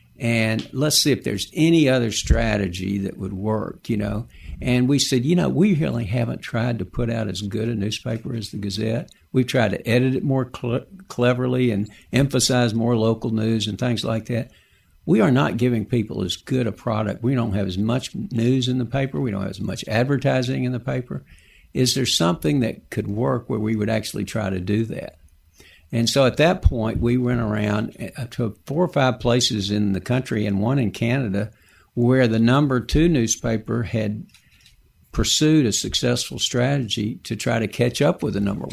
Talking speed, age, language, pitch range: 195 wpm, 60-79, English, 105-125 Hz